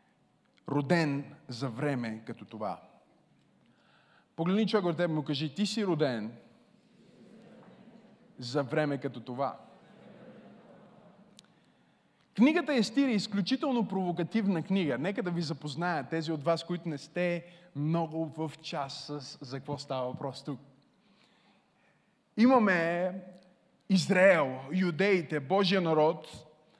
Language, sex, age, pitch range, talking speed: Bulgarian, male, 20-39, 160-225 Hz, 110 wpm